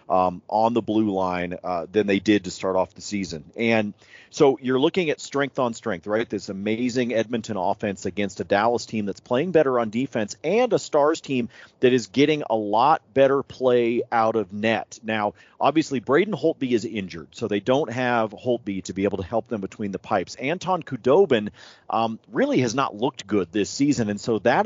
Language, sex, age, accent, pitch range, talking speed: English, male, 40-59, American, 100-135 Hz, 200 wpm